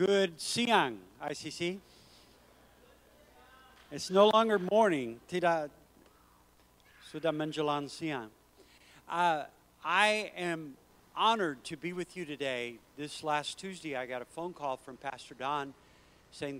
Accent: American